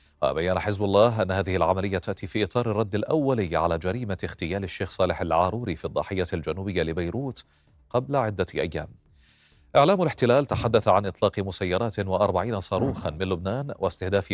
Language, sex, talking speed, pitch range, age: Arabic, male, 145 wpm, 90-110 Hz, 30-49